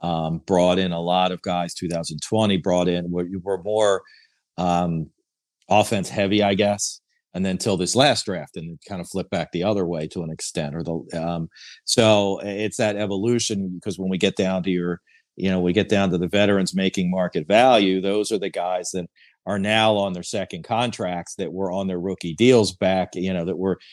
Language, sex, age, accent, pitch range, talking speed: English, male, 50-69, American, 85-100 Hz, 210 wpm